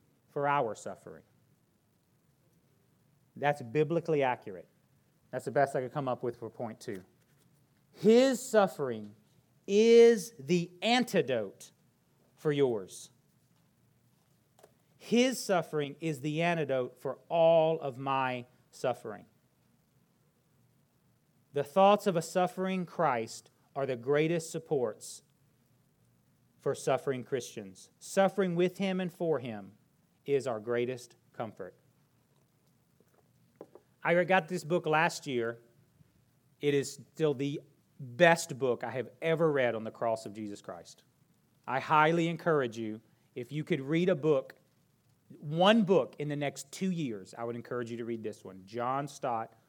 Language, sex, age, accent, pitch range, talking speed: English, male, 40-59, American, 120-170 Hz, 130 wpm